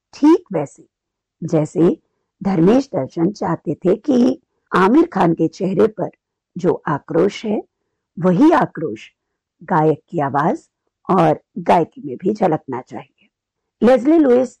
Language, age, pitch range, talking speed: Hindi, 50-69, 165-255 Hz, 115 wpm